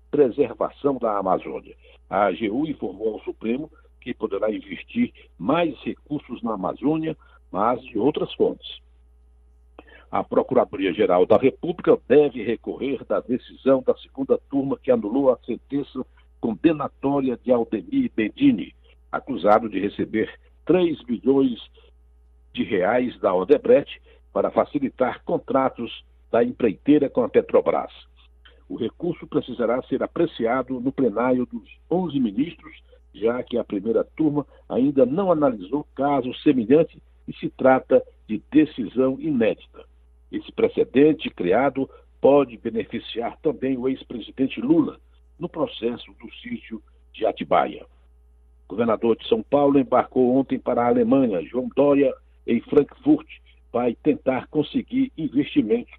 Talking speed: 125 wpm